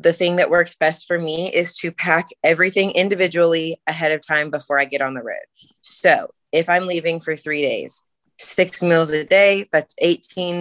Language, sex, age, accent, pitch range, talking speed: English, female, 20-39, American, 155-180 Hz, 190 wpm